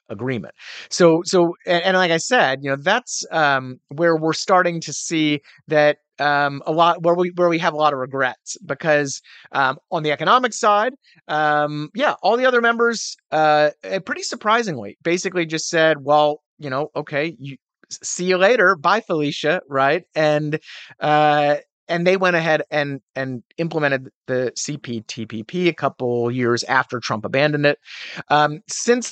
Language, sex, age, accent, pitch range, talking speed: English, male, 30-49, American, 135-170 Hz, 165 wpm